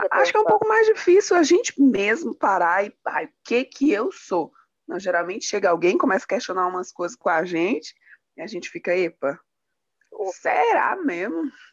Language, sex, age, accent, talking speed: Portuguese, female, 20-39, Brazilian, 190 wpm